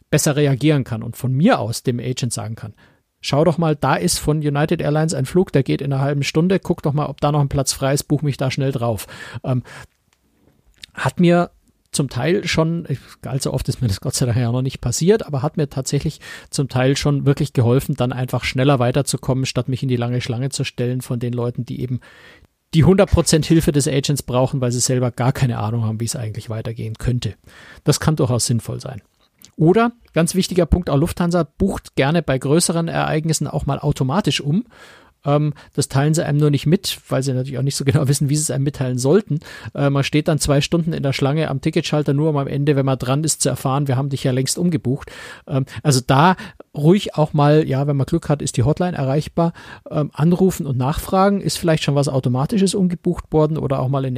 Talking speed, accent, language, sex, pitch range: 220 wpm, German, German, male, 130-155 Hz